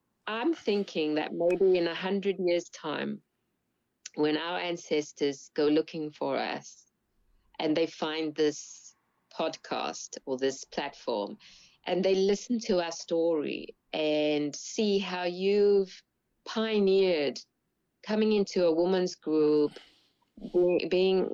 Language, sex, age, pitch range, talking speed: English, female, 20-39, 155-190 Hz, 115 wpm